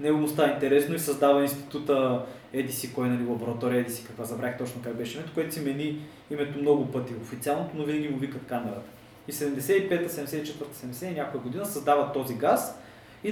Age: 20-39